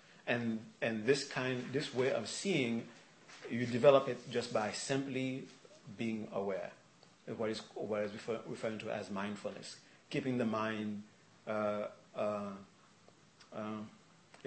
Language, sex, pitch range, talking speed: English, male, 115-135 Hz, 135 wpm